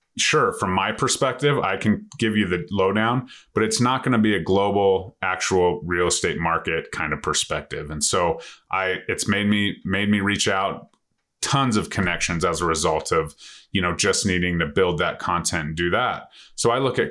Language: English